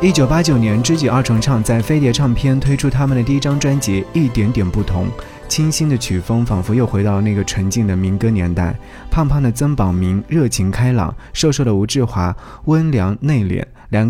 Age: 20-39